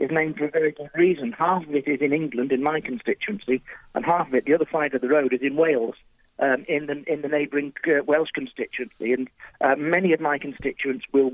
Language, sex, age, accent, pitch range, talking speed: English, male, 40-59, British, 135-155 Hz, 240 wpm